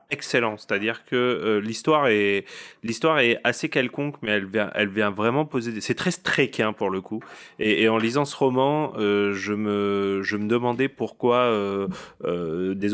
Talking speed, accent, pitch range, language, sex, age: 200 wpm, French, 105-125 Hz, French, male, 30-49